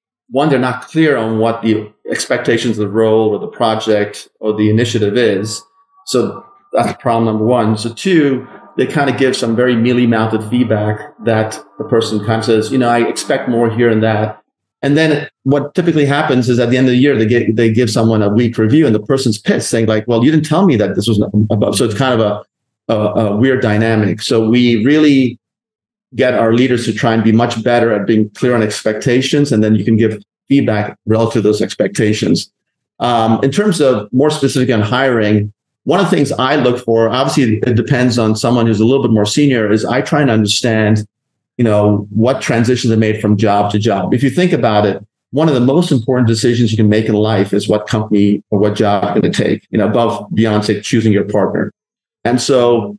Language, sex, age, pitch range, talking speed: English, male, 30-49, 110-130 Hz, 220 wpm